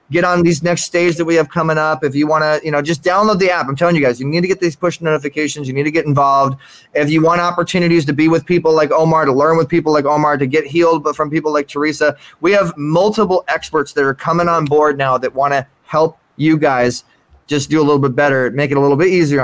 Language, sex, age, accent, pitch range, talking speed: English, male, 20-39, American, 150-175 Hz, 270 wpm